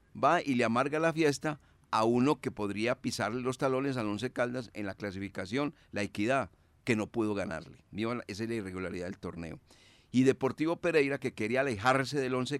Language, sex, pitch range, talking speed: Spanish, male, 100-135 Hz, 185 wpm